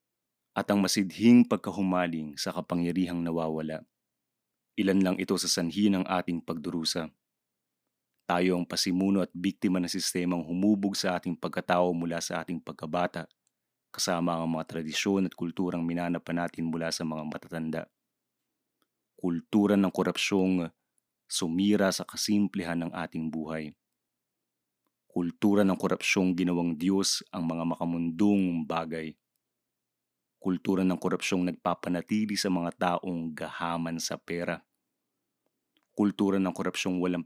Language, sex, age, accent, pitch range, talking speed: English, male, 30-49, Filipino, 85-95 Hz, 120 wpm